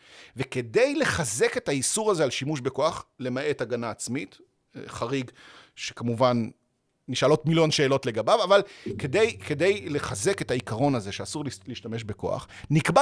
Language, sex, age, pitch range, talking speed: Hebrew, male, 40-59, 135-215 Hz, 130 wpm